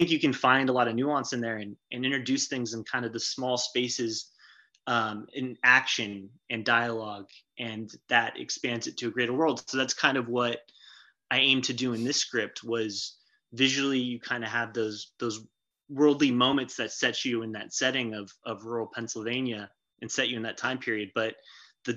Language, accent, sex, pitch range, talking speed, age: English, American, male, 115-130 Hz, 200 wpm, 20-39